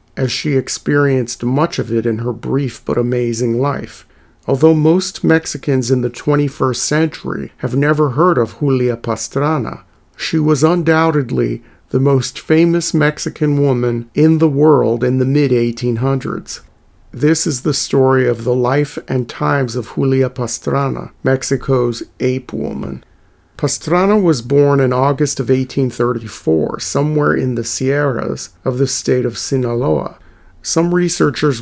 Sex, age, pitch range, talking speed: male, 40-59, 120-150 Hz, 135 wpm